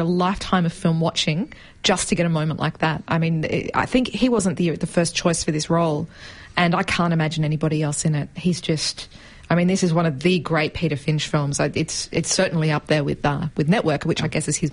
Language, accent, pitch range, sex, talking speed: English, Australian, 160-190 Hz, female, 245 wpm